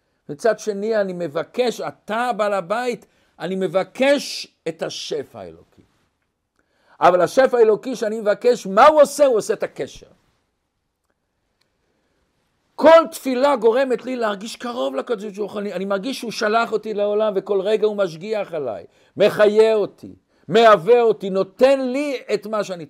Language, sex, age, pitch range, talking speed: Hebrew, male, 50-69, 190-255 Hz, 135 wpm